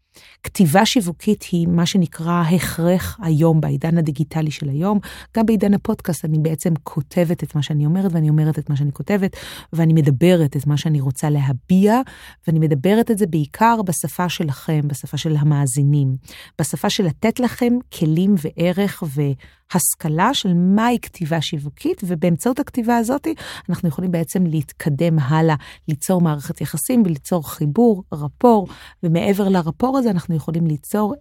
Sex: female